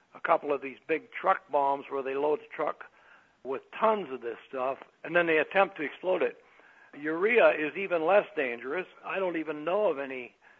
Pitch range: 130-165 Hz